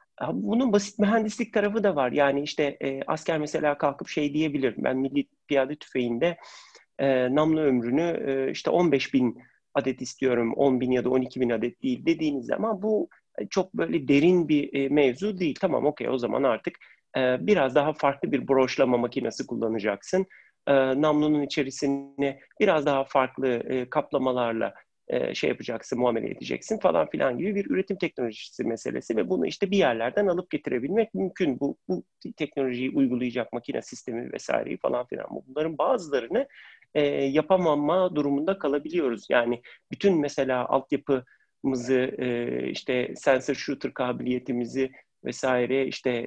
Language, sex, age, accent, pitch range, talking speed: Turkish, male, 40-59, native, 130-155 Hz, 145 wpm